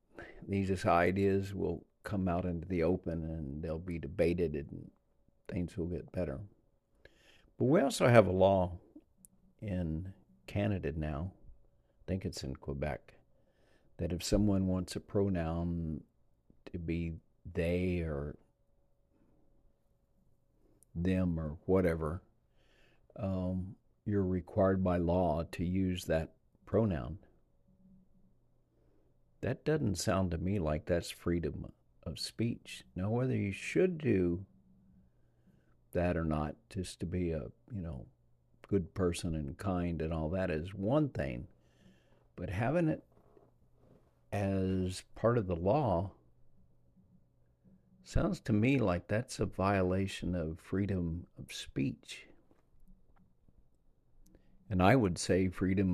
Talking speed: 120 wpm